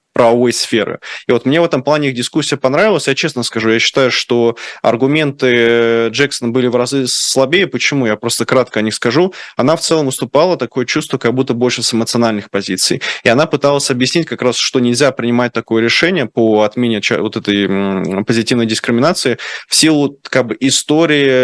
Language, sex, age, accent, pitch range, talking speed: Russian, male, 20-39, native, 110-130 Hz, 175 wpm